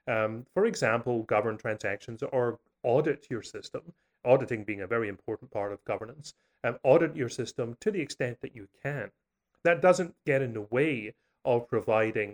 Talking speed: 170 wpm